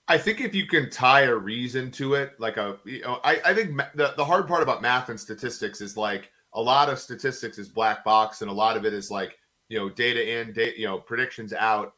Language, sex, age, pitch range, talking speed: English, male, 30-49, 115-150 Hz, 255 wpm